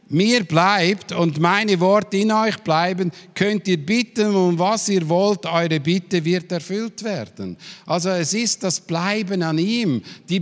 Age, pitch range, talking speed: 50-69, 145-185 Hz, 160 wpm